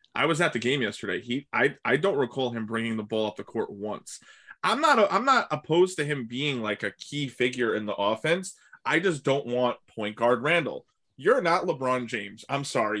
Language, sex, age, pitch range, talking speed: English, male, 20-39, 110-140 Hz, 220 wpm